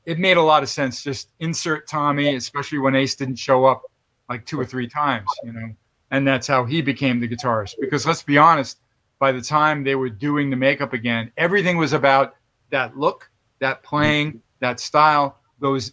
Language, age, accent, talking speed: English, 40-59, American, 195 wpm